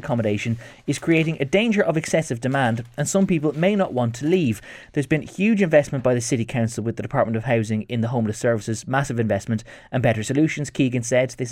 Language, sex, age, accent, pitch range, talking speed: English, male, 20-39, Irish, 115-155 Hz, 215 wpm